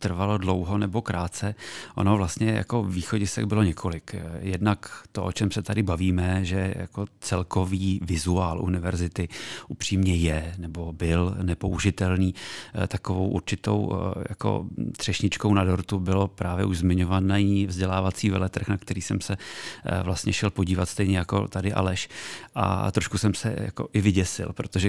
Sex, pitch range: male, 90-100 Hz